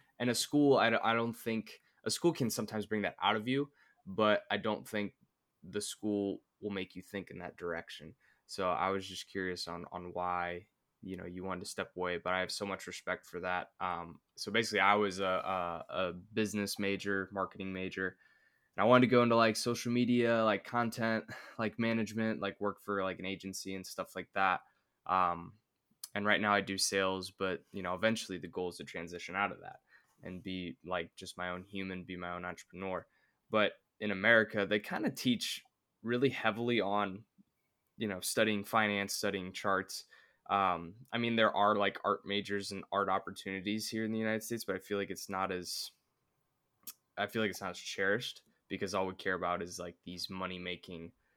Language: English